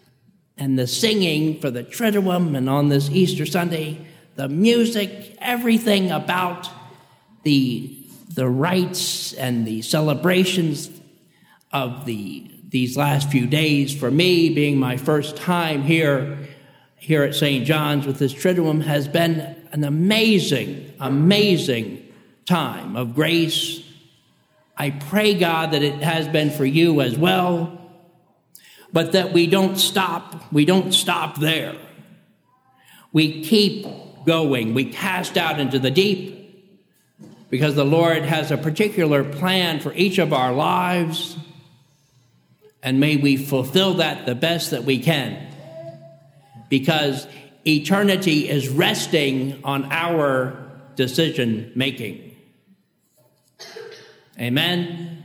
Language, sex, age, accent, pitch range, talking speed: English, male, 50-69, American, 140-180 Hz, 115 wpm